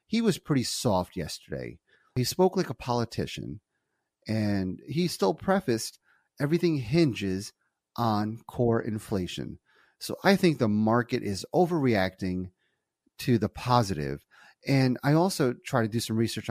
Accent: American